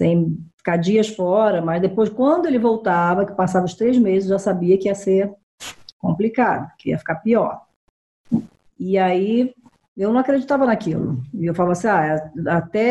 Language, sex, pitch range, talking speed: Portuguese, female, 180-250 Hz, 170 wpm